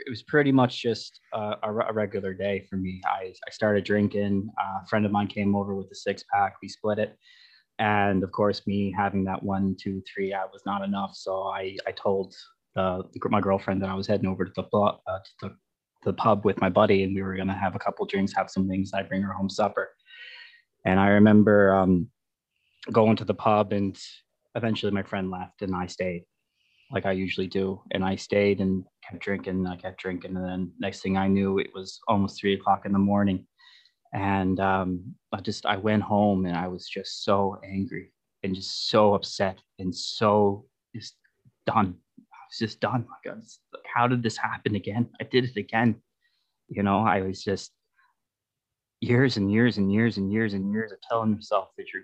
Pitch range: 95-110 Hz